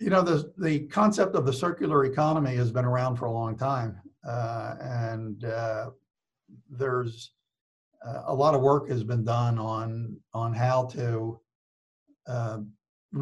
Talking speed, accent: 150 wpm, American